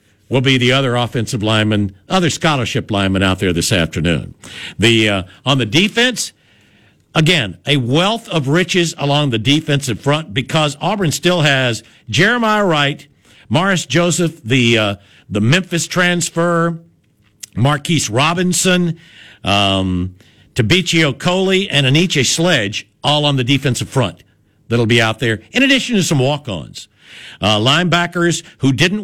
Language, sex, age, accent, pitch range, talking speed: English, male, 60-79, American, 110-165 Hz, 135 wpm